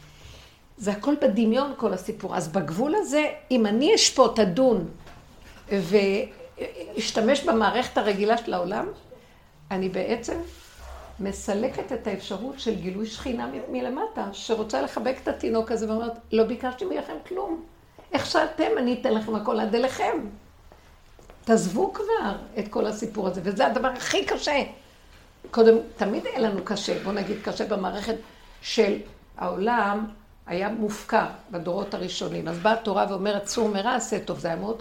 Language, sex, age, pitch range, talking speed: Hebrew, female, 50-69, 200-250 Hz, 140 wpm